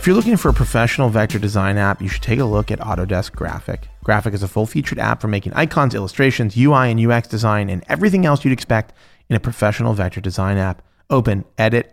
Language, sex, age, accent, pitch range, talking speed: English, male, 30-49, American, 100-130 Hz, 215 wpm